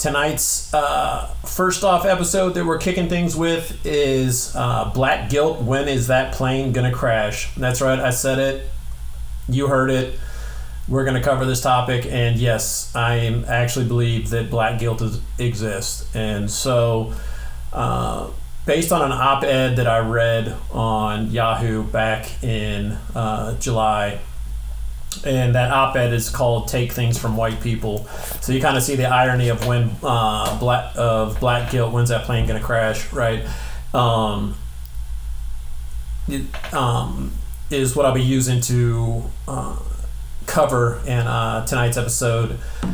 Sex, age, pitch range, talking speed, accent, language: male, 40-59, 105-130 Hz, 145 wpm, American, English